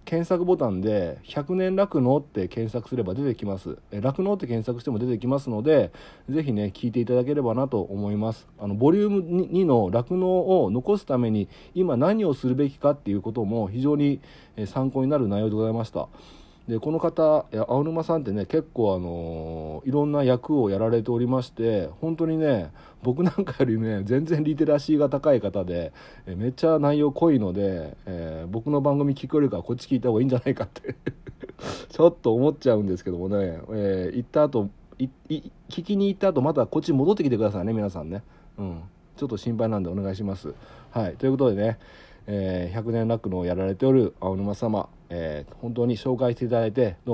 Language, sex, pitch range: Japanese, male, 100-140 Hz